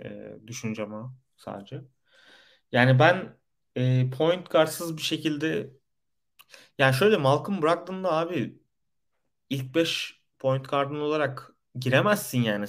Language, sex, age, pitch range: Turkish, male, 30-49, 120-145 Hz